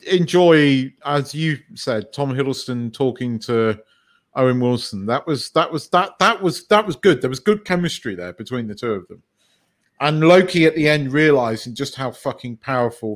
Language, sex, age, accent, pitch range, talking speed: English, male, 40-59, British, 120-150 Hz, 180 wpm